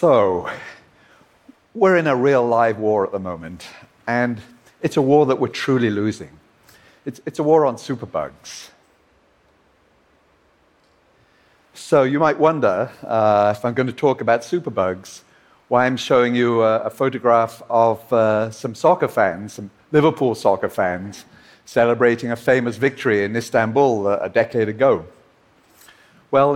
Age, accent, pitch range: 50-69, British, 110-140 Hz